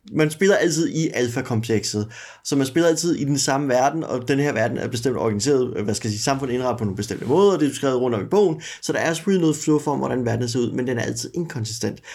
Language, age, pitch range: Danish, 30-49, 130-155 Hz